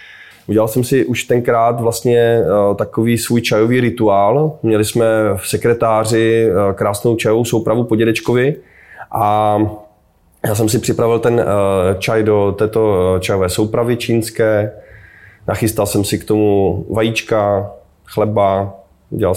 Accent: native